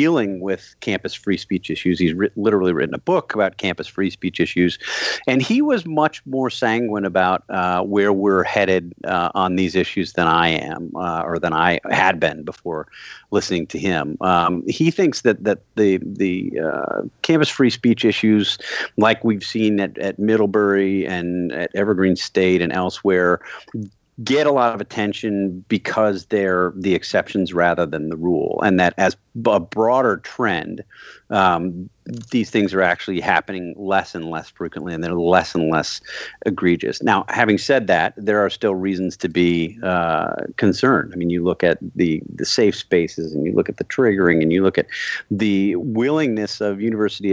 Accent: American